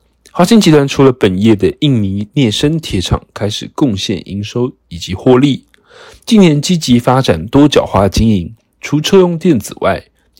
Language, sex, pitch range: Chinese, male, 100-150 Hz